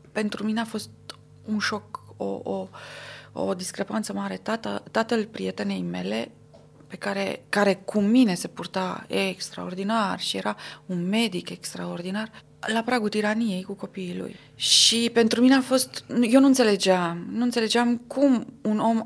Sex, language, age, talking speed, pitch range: female, Romanian, 30-49, 150 wpm, 190-250 Hz